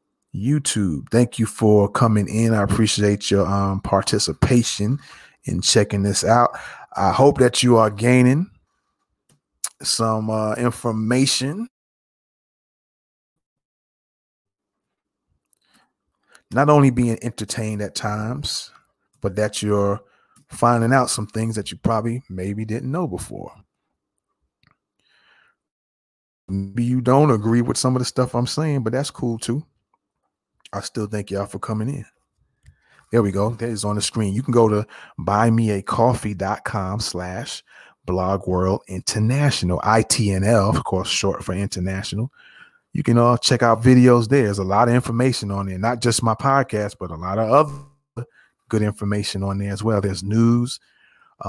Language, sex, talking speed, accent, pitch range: English, male, 140 wpm, American, 100-125 Hz